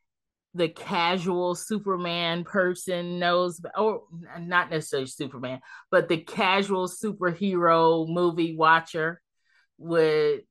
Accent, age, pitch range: American, 30-49, 160-205 Hz